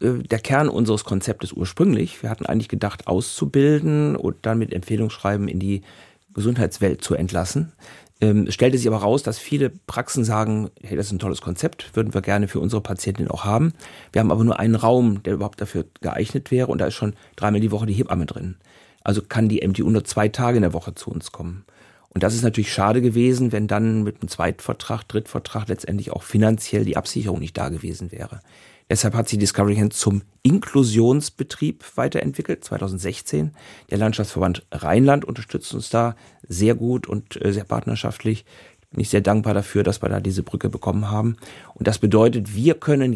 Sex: male